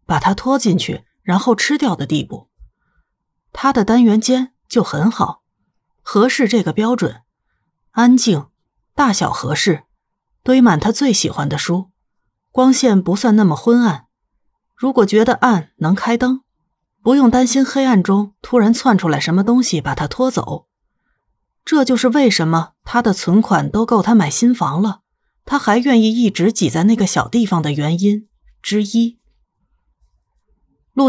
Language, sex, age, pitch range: Chinese, female, 30-49, 170-240 Hz